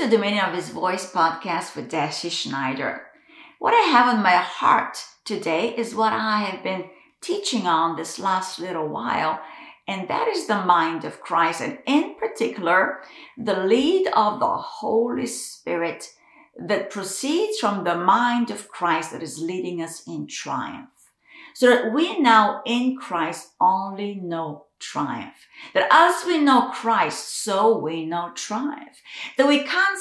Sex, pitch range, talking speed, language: female, 180-290 Hz, 155 wpm, English